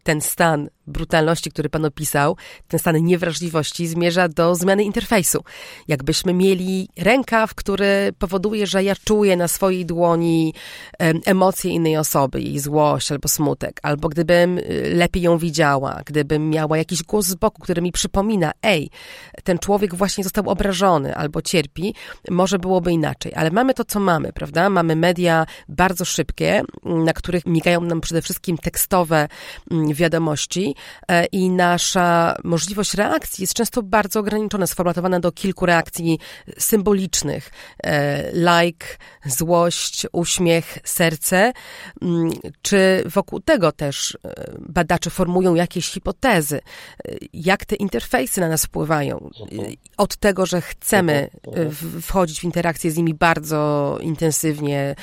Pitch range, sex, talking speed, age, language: 160-195 Hz, female, 125 wpm, 30-49, Polish